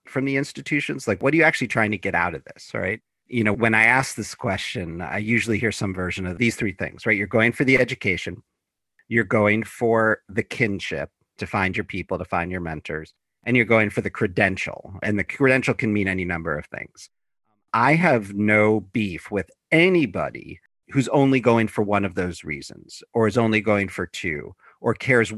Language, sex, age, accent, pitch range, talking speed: English, male, 40-59, American, 95-120 Hz, 205 wpm